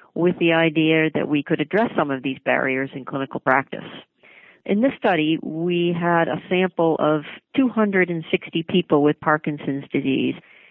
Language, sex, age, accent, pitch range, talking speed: English, female, 40-59, American, 150-180 Hz, 150 wpm